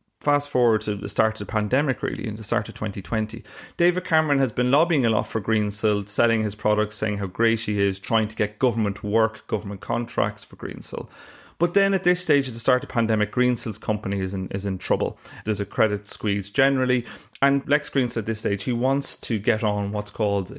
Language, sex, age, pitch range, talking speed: English, male, 30-49, 105-130 Hz, 220 wpm